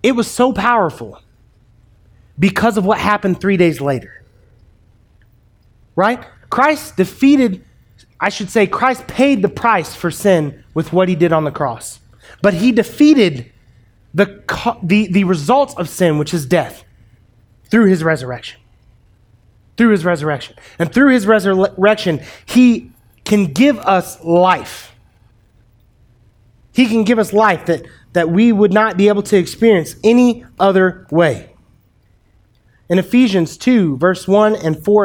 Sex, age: male, 30-49